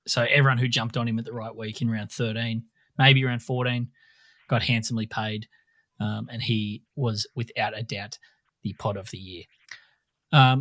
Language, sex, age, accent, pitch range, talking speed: English, male, 30-49, Australian, 115-135 Hz, 180 wpm